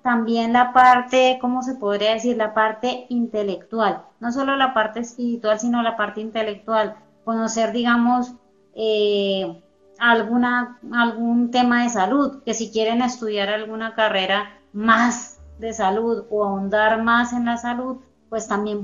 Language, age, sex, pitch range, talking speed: Spanish, 30-49, female, 210-250 Hz, 140 wpm